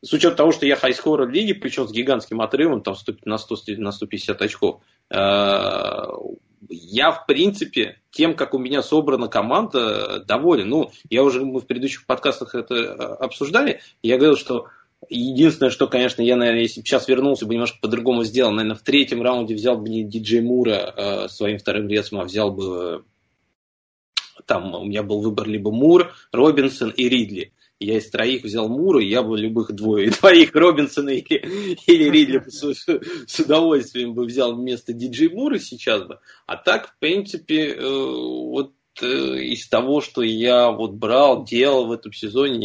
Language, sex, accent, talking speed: Russian, male, native, 165 wpm